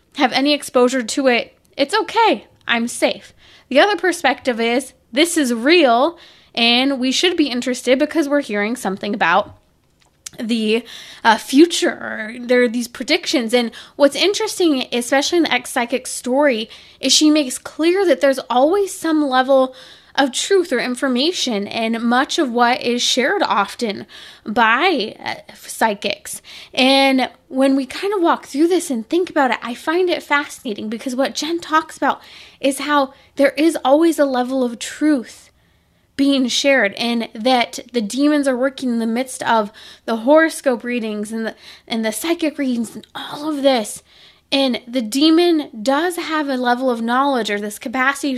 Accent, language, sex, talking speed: American, English, female, 160 wpm